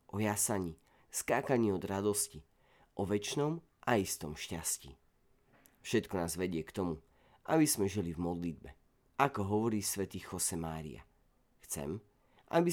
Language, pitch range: Slovak, 80-100 Hz